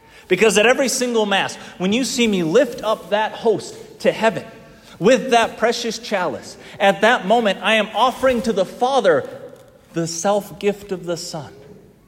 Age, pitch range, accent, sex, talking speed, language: 30-49, 150-210 Hz, American, male, 165 wpm, English